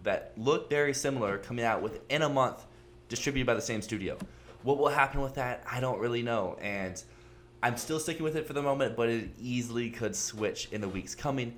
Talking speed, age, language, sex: 210 wpm, 20-39, English, male